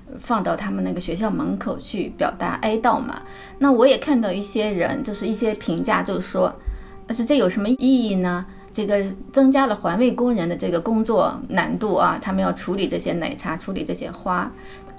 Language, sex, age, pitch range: Chinese, female, 20-39, 205-265 Hz